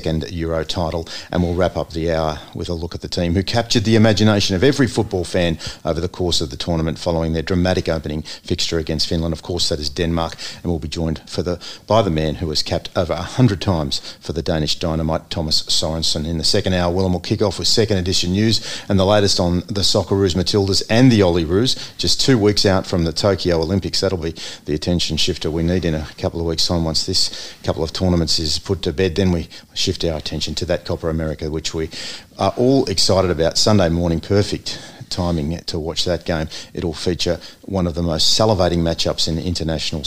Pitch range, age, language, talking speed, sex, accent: 80-100 Hz, 40-59, English, 220 wpm, male, Australian